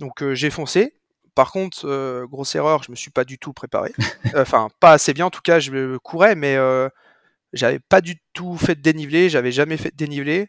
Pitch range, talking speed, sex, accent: 135-160 Hz, 235 wpm, male, French